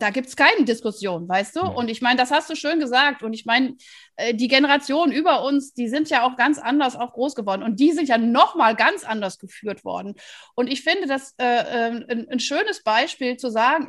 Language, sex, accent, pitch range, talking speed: German, female, German, 230-290 Hz, 225 wpm